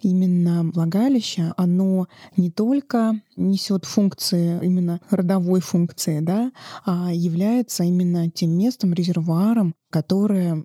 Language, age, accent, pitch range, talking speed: Russian, 20-39, native, 180-215 Hz, 100 wpm